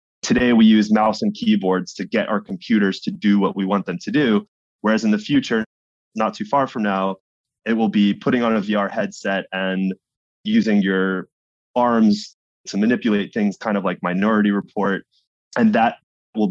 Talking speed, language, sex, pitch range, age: 180 wpm, English, male, 95-125 Hz, 20-39